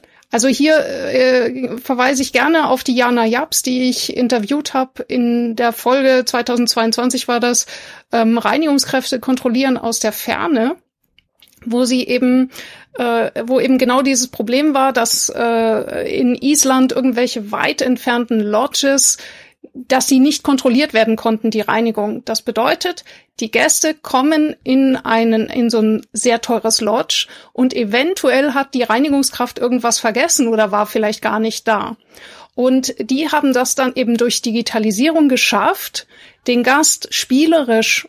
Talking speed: 140 wpm